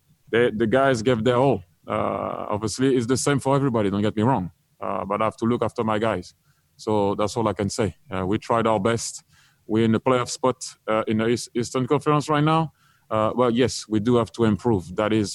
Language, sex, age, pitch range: English, male, 30-49, 110-130 Hz